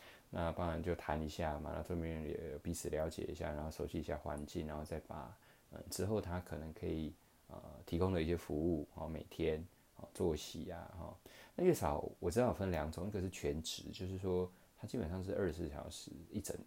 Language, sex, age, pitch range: Chinese, male, 20-39, 75-95 Hz